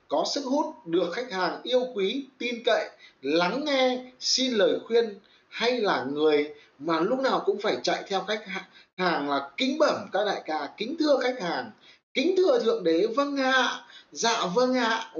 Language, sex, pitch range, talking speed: Vietnamese, male, 180-265 Hz, 195 wpm